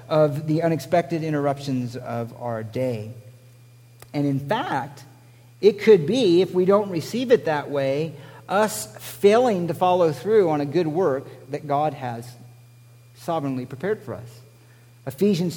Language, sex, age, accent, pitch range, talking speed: English, male, 50-69, American, 120-175 Hz, 145 wpm